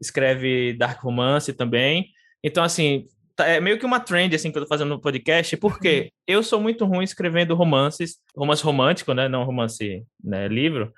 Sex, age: male, 20-39